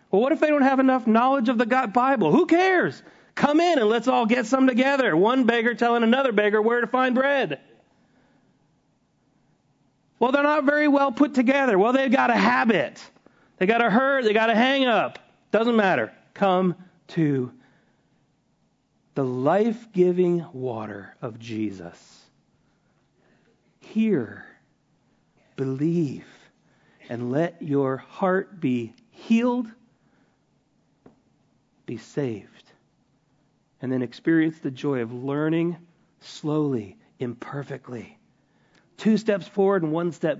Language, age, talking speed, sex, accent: English, 40-59, 125 wpm, male, American